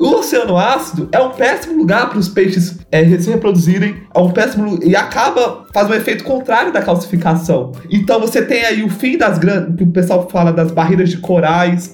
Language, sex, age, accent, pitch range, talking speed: Portuguese, male, 20-39, Brazilian, 165-210 Hz, 175 wpm